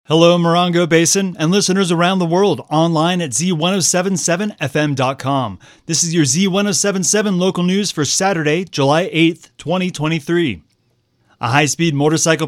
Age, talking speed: 30-49, 125 wpm